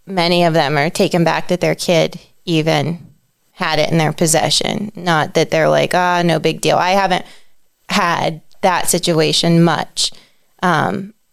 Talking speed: 160 wpm